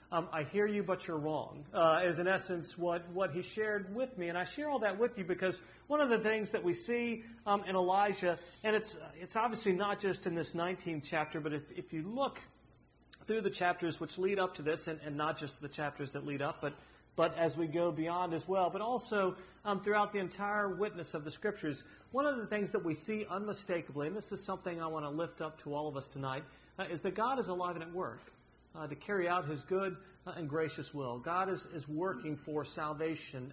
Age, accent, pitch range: 40-59, American, 150-195 Hz